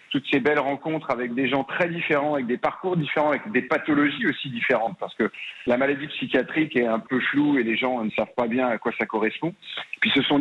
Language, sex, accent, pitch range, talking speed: French, male, French, 125-155 Hz, 235 wpm